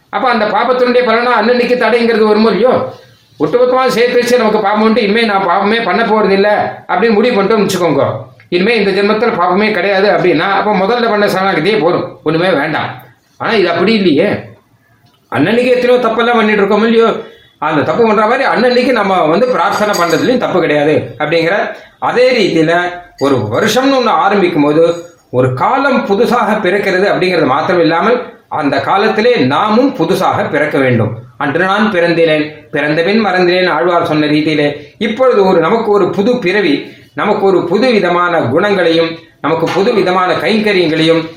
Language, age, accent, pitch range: Tamil, 30-49, native, 155-225 Hz